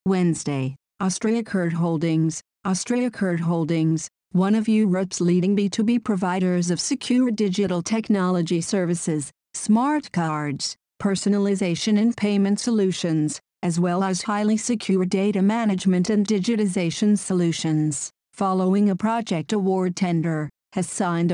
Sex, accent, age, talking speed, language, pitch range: female, American, 50-69, 110 wpm, German, 180-215 Hz